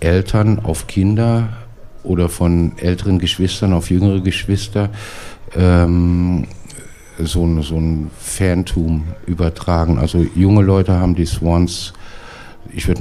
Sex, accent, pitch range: male, German, 80-90 Hz